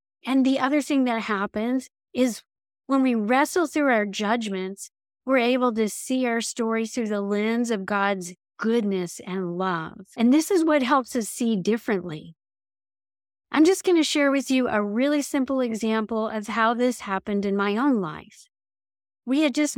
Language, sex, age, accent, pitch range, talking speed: English, female, 40-59, American, 195-250 Hz, 175 wpm